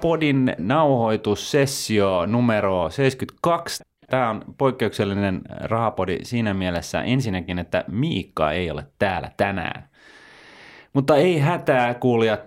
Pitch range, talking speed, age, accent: 90-125 Hz, 100 wpm, 30-49, native